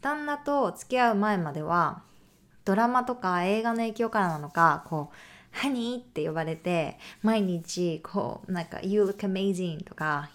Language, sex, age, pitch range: Japanese, female, 20-39, 175-240 Hz